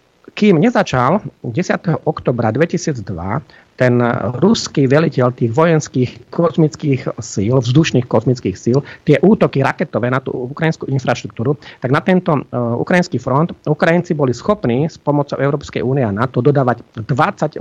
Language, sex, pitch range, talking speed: Slovak, male, 120-150 Hz, 135 wpm